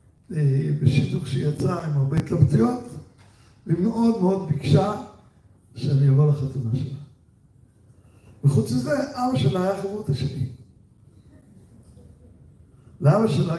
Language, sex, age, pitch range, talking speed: Hebrew, male, 60-79, 125-160 Hz, 95 wpm